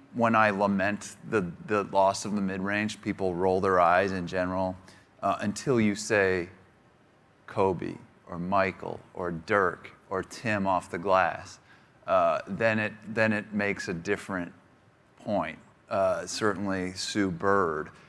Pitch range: 95-110 Hz